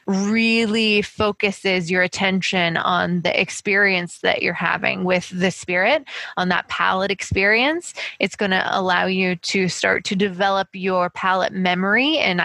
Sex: female